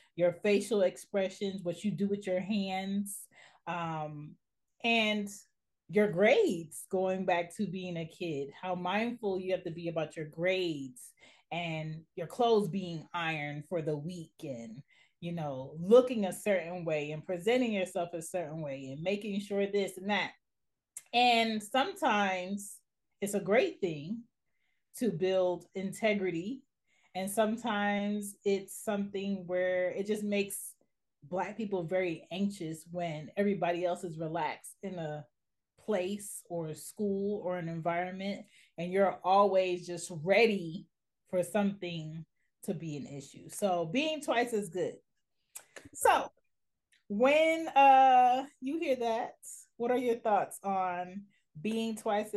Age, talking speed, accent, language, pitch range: 30-49, 135 wpm, American, English, 175-210 Hz